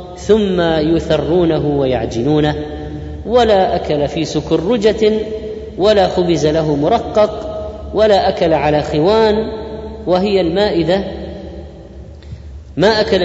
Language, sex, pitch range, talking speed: Arabic, female, 140-180 Hz, 85 wpm